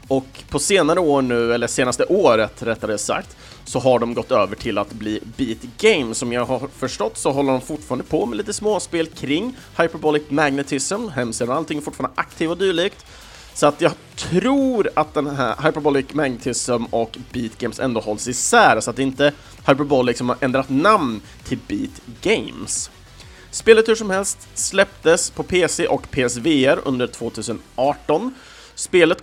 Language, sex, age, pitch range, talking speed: Swedish, male, 30-49, 125-175 Hz, 165 wpm